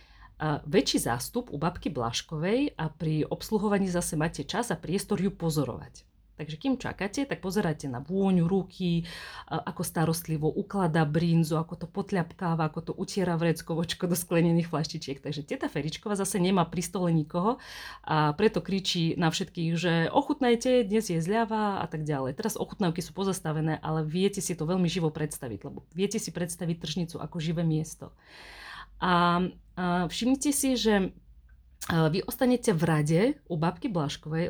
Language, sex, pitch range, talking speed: Slovak, female, 155-185 Hz, 155 wpm